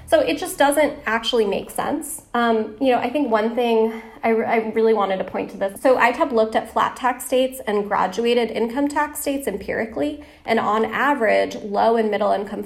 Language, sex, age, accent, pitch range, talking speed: English, female, 30-49, American, 200-240 Hz, 205 wpm